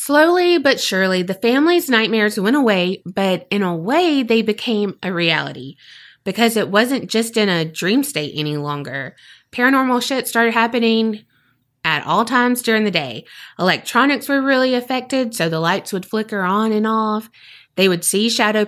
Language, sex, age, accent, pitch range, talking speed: English, female, 20-39, American, 175-235 Hz, 165 wpm